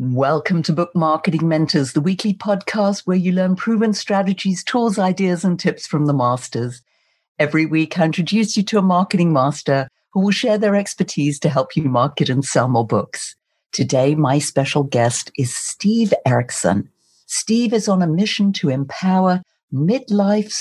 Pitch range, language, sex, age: 140-195 Hz, English, female, 60-79